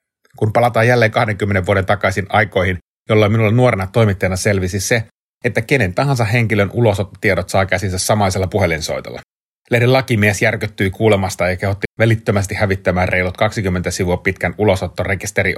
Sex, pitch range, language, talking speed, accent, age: male, 90-110 Hz, Finnish, 135 wpm, native, 30-49